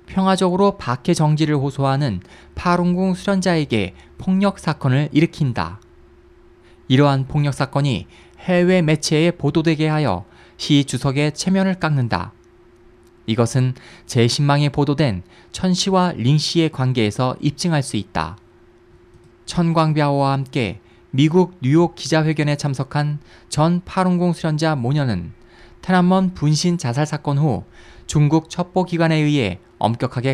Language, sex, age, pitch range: Korean, male, 20-39, 120-165 Hz